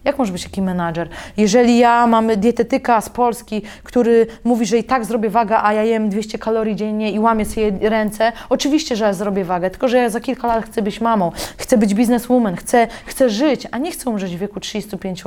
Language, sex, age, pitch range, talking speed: Polish, female, 20-39, 210-255 Hz, 215 wpm